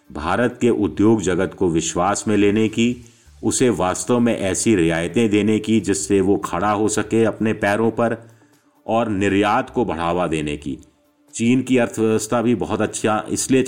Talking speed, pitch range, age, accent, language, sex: 160 wpm, 95-115 Hz, 50-69, native, Hindi, male